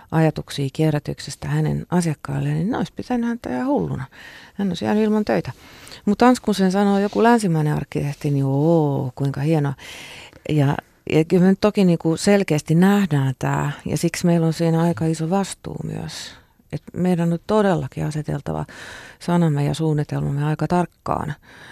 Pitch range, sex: 150-195 Hz, female